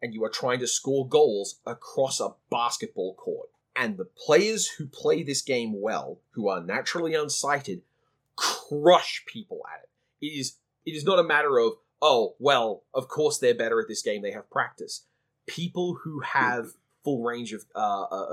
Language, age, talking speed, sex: English, 30-49, 175 wpm, male